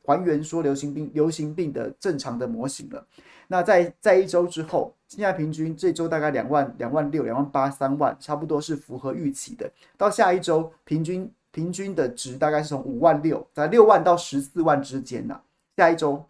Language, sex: Chinese, male